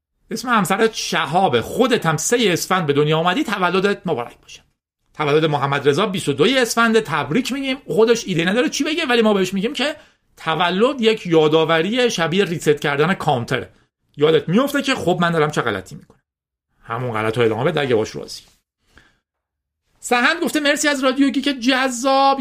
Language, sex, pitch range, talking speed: Persian, male, 145-230 Hz, 160 wpm